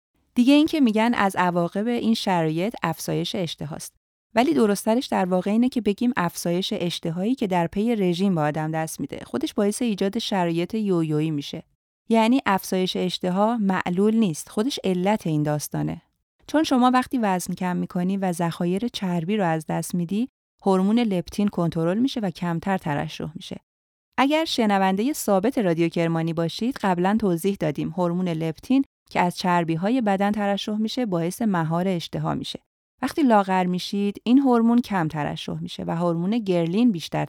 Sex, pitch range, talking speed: female, 170-225 Hz, 160 wpm